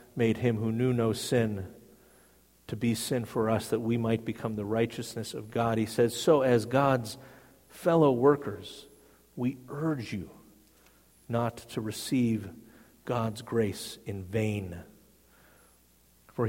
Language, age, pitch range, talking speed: English, 50-69, 100-120 Hz, 135 wpm